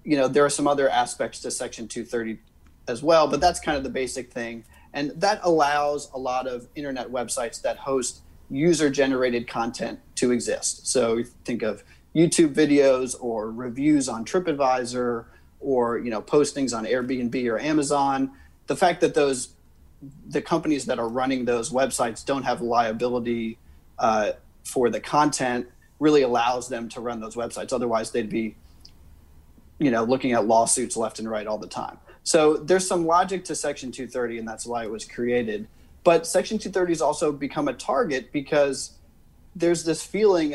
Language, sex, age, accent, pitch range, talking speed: English, male, 30-49, American, 120-150 Hz, 170 wpm